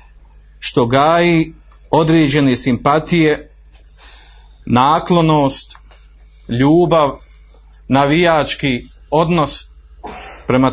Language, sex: Croatian, male